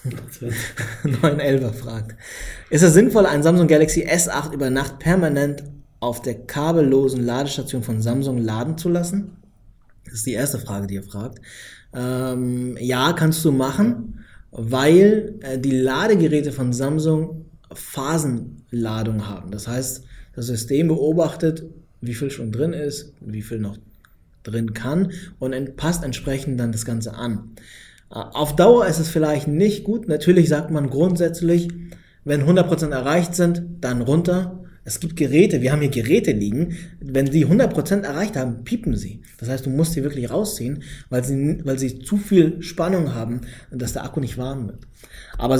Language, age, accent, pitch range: German, 20-39, German, 120-160 Hz